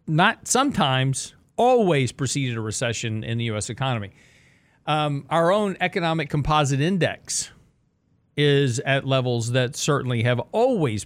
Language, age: English, 50-69